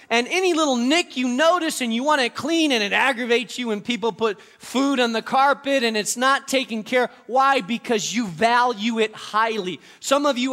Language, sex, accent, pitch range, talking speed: English, male, American, 210-270 Hz, 210 wpm